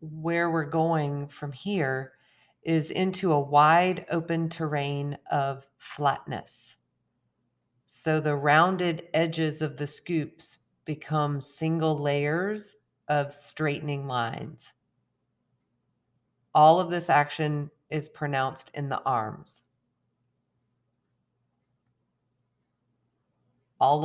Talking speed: 90 wpm